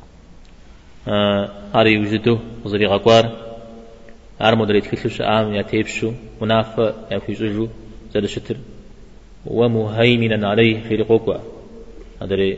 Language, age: Czech, 30-49